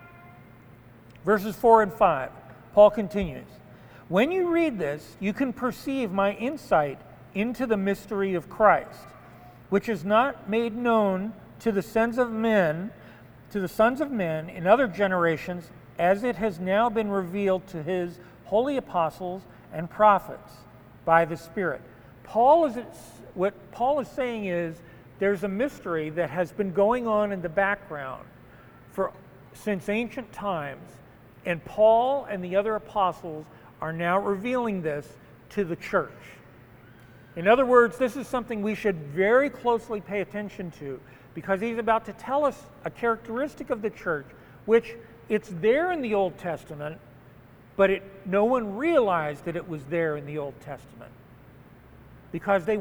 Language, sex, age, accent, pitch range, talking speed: English, male, 50-69, American, 155-225 Hz, 150 wpm